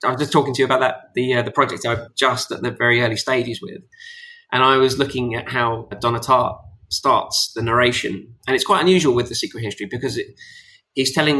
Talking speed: 225 wpm